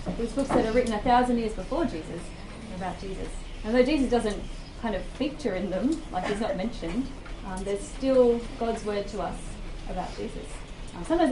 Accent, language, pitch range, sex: Australian, English, 185-240 Hz, female